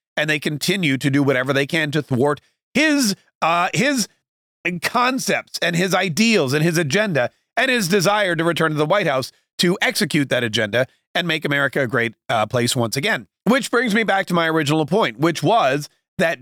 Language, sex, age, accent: English, male, 40-59, American